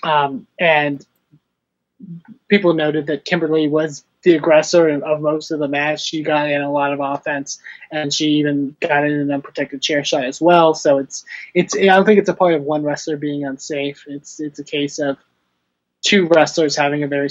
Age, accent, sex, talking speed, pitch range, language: 20-39, American, male, 195 wpm, 140-160 Hz, English